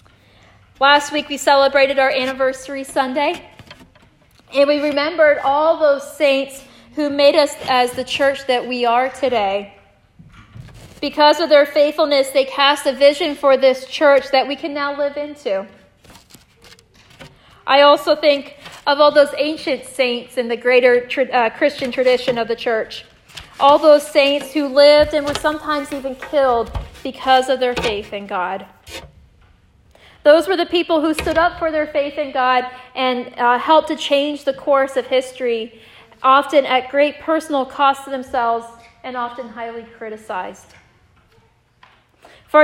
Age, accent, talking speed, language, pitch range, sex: 30-49, American, 150 wpm, English, 250-290 Hz, female